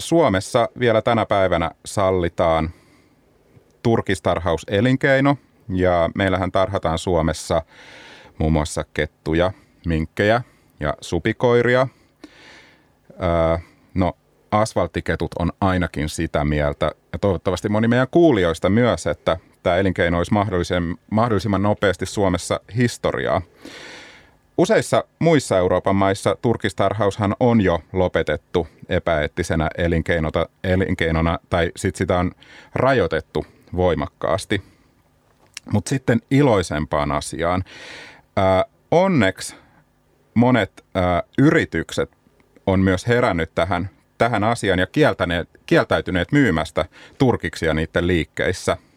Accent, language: native, Finnish